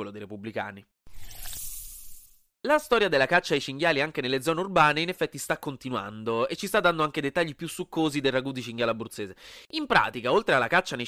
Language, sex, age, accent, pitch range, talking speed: Italian, male, 30-49, native, 120-175 Hz, 195 wpm